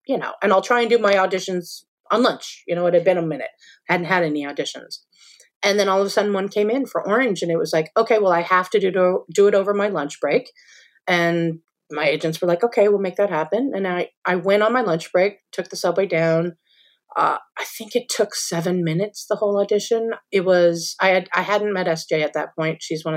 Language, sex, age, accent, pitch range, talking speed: English, female, 30-49, American, 170-235 Hz, 245 wpm